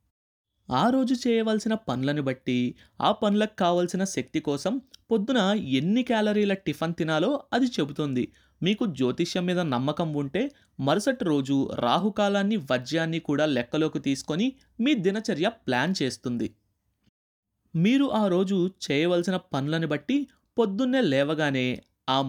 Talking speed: 115 wpm